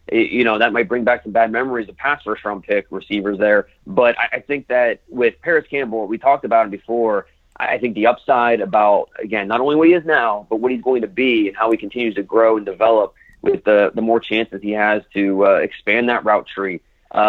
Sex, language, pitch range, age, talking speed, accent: male, English, 105-125 Hz, 30-49, 235 wpm, American